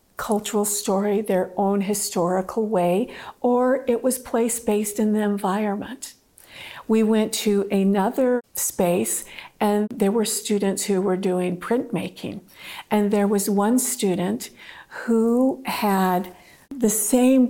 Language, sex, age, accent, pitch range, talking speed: English, female, 50-69, American, 200-230 Hz, 125 wpm